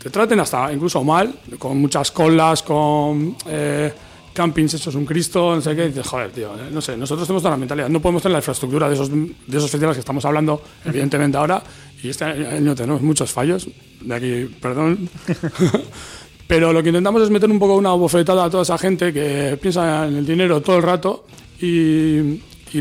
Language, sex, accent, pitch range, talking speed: Spanish, male, Spanish, 135-175 Hz, 200 wpm